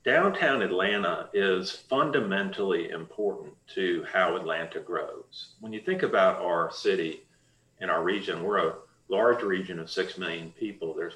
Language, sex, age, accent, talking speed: English, male, 40-59, American, 145 wpm